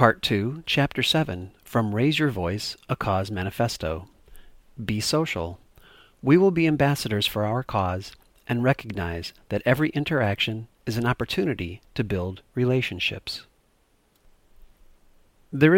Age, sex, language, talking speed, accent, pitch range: 40-59, male, English, 120 wpm, American, 95-140 Hz